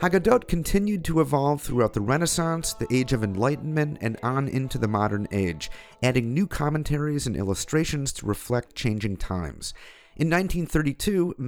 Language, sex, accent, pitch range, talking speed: English, male, American, 100-145 Hz, 145 wpm